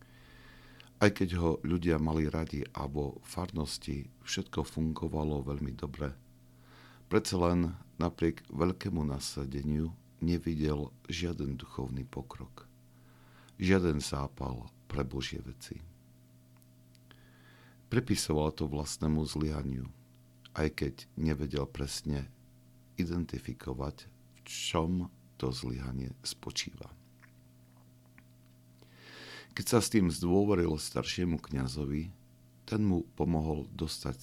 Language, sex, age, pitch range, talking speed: Slovak, male, 60-79, 65-90 Hz, 90 wpm